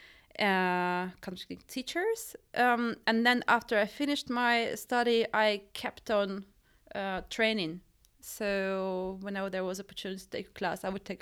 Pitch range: 195-230 Hz